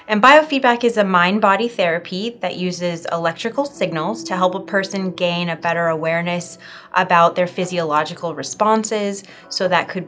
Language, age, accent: English, 20-39, American